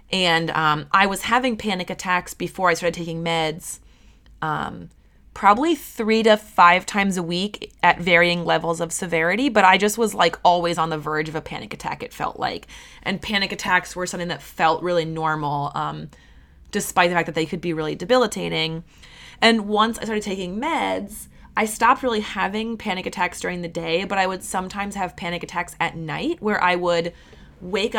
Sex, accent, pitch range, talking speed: female, American, 170-205 Hz, 190 wpm